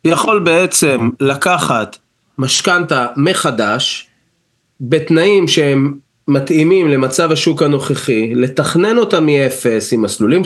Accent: native